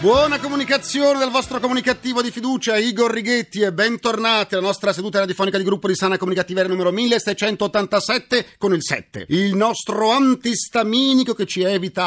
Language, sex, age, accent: Italian, male, 40-59, native